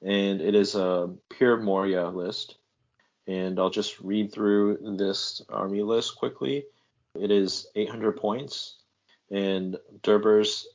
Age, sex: 30-49, male